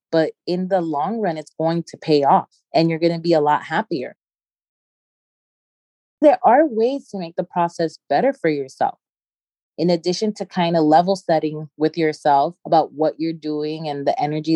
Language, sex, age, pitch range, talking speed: English, female, 20-39, 160-205 Hz, 180 wpm